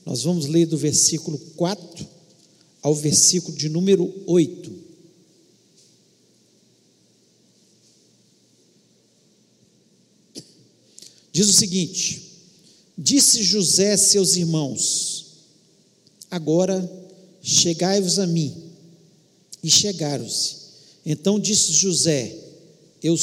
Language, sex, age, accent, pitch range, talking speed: Portuguese, male, 50-69, Brazilian, 160-195 Hz, 75 wpm